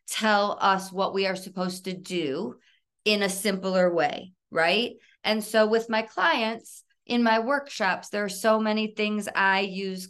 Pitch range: 165-210 Hz